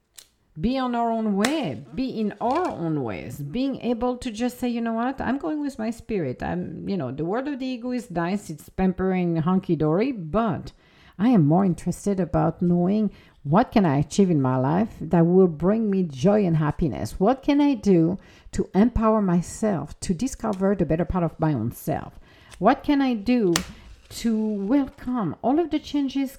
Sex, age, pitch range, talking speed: female, 50-69, 155-240 Hz, 190 wpm